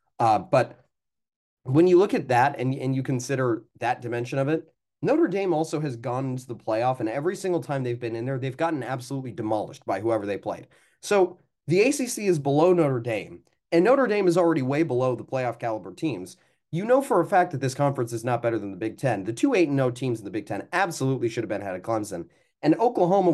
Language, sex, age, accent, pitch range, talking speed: English, male, 30-49, American, 125-175 Hz, 235 wpm